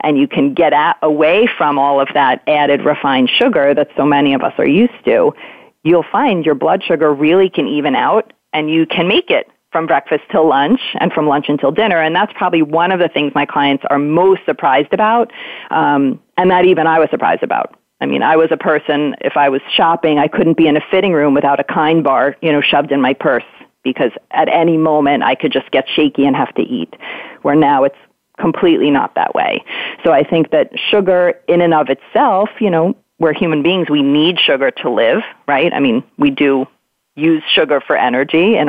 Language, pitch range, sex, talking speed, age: English, 145-180 Hz, female, 220 wpm, 40-59